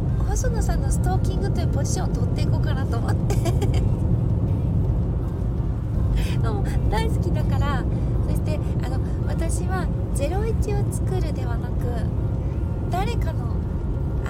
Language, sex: Japanese, female